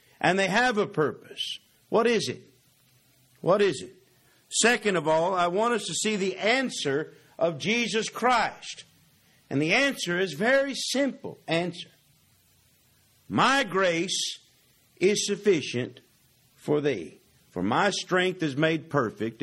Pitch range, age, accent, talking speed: 125-185 Hz, 50-69, American, 135 wpm